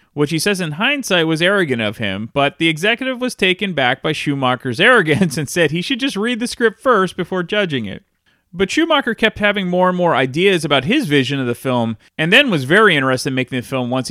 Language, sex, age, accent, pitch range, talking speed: English, male, 30-49, American, 130-200 Hz, 230 wpm